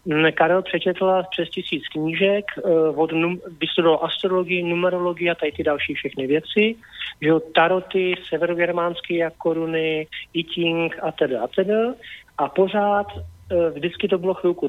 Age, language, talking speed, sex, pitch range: 40-59, Slovak, 110 wpm, male, 145-180 Hz